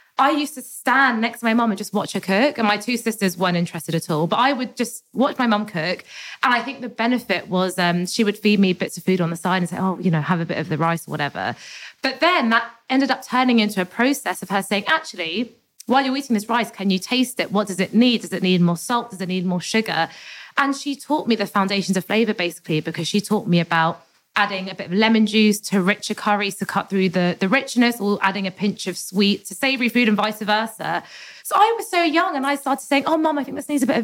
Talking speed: 270 wpm